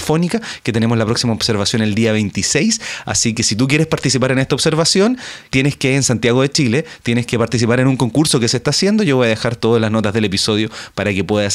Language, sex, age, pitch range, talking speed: Spanish, male, 30-49, 105-145 Hz, 235 wpm